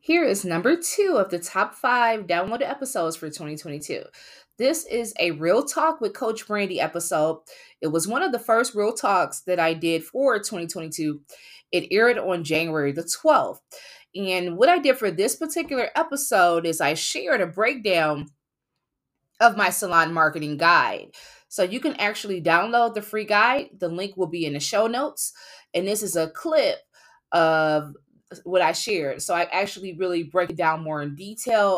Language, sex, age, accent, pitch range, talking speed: English, female, 20-39, American, 165-235 Hz, 175 wpm